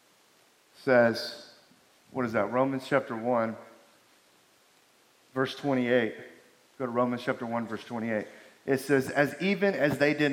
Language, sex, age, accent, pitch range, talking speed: English, male, 40-59, American, 130-160 Hz, 135 wpm